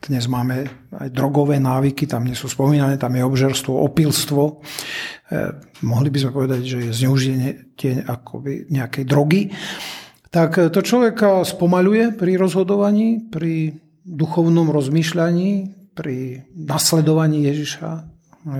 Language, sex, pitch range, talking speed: Slovak, male, 135-165 Hz, 115 wpm